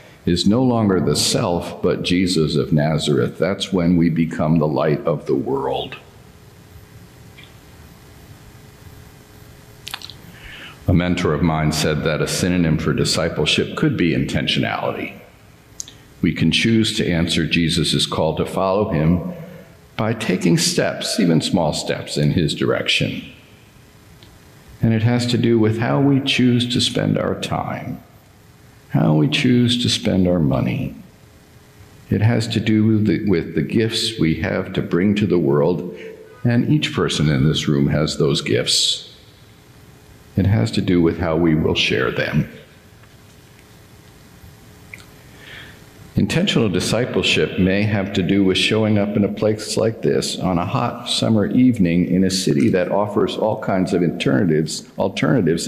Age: 50-69